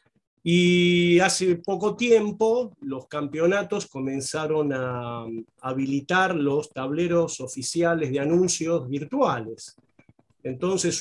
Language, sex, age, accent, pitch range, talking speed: Spanish, male, 40-59, Argentinian, 135-195 Hz, 85 wpm